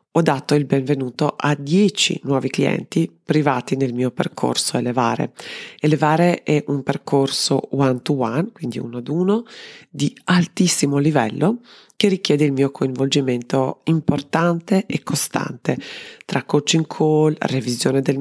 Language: Italian